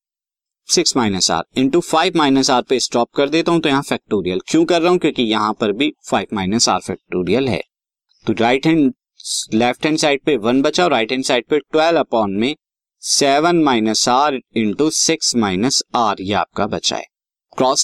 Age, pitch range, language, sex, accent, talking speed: 20-39, 115-150 Hz, Hindi, male, native, 75 wpm